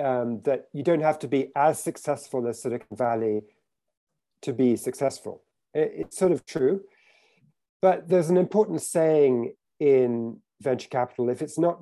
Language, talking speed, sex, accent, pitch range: English, 150 wpm, male, British, 125-180 Hz